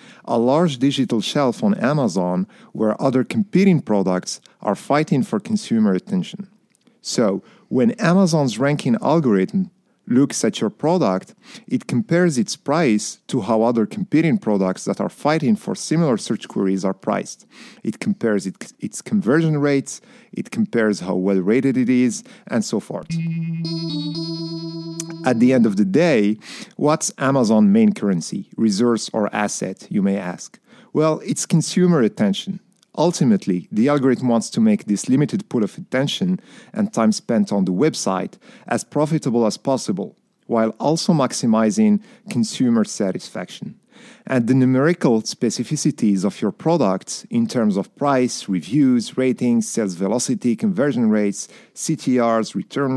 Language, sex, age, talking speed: English, male, 40-59, 135 wpm